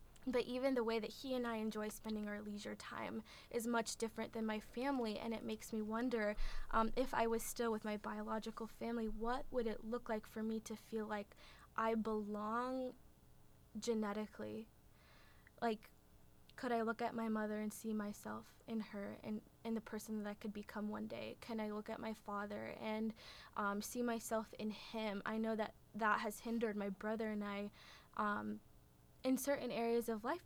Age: 20-39